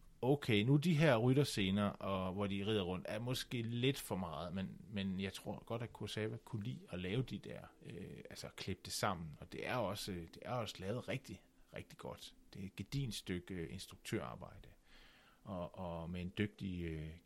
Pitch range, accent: 95-120 Hz, native